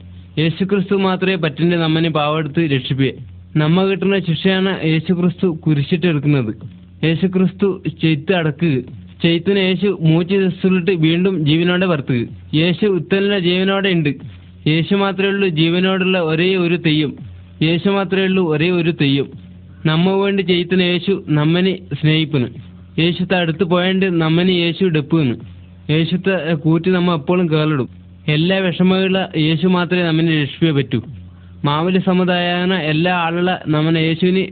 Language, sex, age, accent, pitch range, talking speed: Hindi, male, 20-39, native, 150-185 Hz, 75 wpm